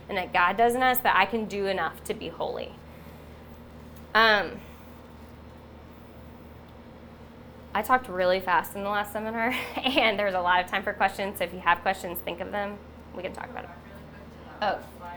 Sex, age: female, 10-29